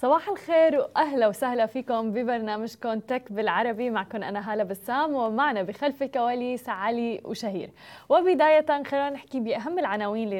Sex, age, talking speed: female, 20-39, 135 wpm